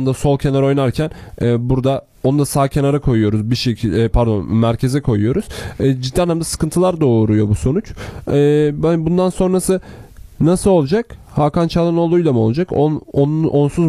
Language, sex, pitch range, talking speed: Turkish, male, 120-155 Hz, 170 wpm